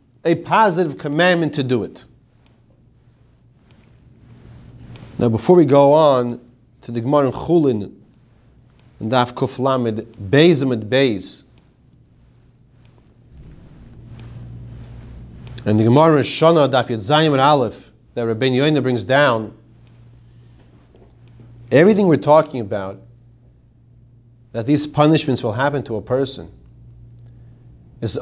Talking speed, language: 80 wpm, English